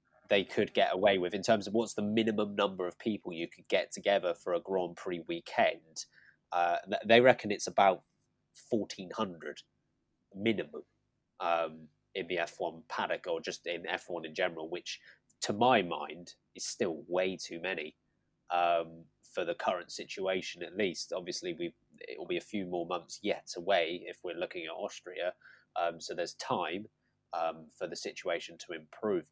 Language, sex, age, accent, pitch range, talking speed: English, male, 20-39, British, 95-120 Hz, 170 wpm